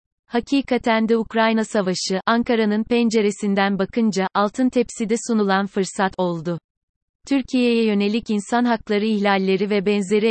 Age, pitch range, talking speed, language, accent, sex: 30-49, 195-225 Hz, 110 wpm, Turkish, native, female